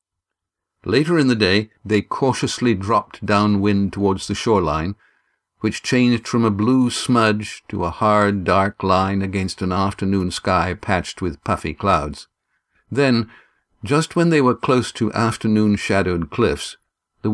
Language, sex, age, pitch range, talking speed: English, male, 60-79, 95-115 Hz, 140 wpm